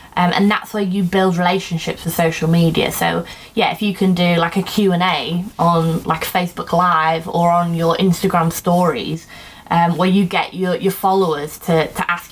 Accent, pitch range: British, 175-205 Hz